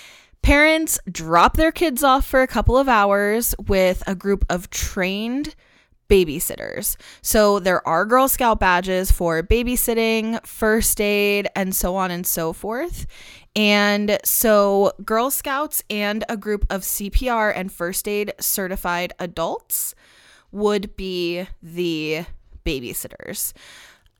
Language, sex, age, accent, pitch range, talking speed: English, female, 20-39, American, 180-235 Hz, 125 wpm